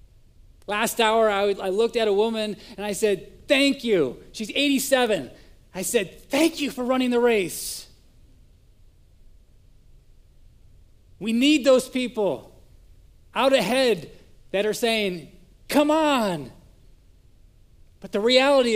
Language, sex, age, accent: English, male, 30-49, American